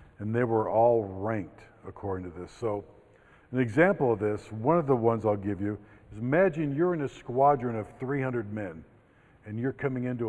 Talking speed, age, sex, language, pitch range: 190 wpm, 50-69, male, English, 100-130 Hz